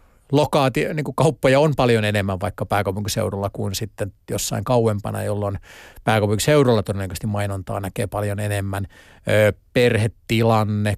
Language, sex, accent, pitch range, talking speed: Finnish, male, native, 100-125 Hz, 100 wpm